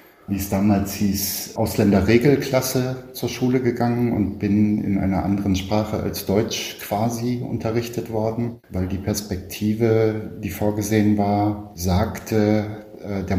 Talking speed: 120 wpm